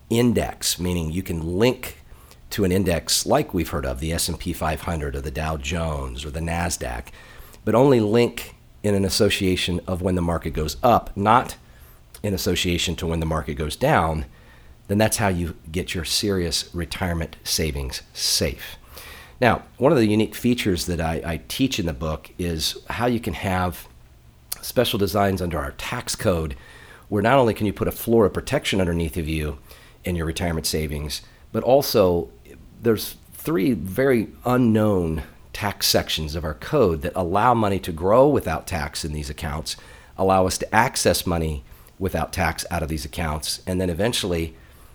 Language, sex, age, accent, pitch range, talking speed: English, male, 40-59, American, 80-100 Hz, 170 wpm